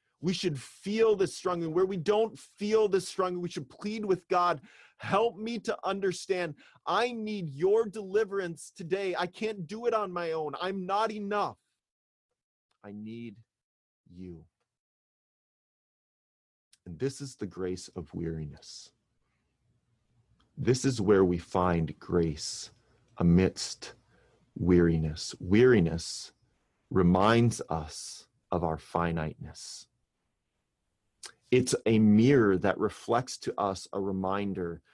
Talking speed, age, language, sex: 115 wpm, 30-49, English, male